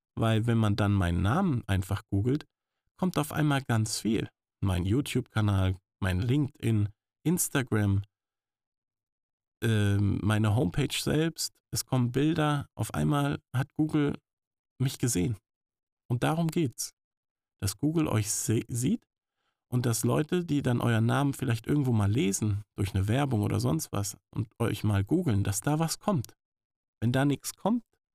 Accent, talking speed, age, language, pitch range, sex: German, 145 wpm, 50-69, German, 105-145 Hz, male